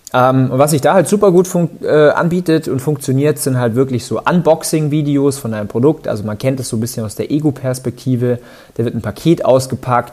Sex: male